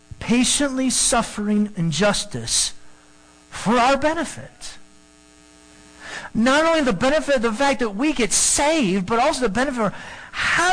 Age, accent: 50-69, American